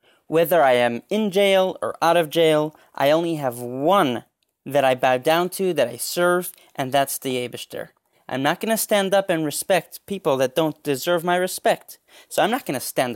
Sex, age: male, 20-39